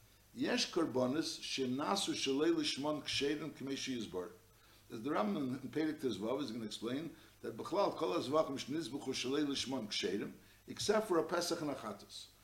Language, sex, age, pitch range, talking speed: English, male, 60-79, 110-155 Hz, 140 wpm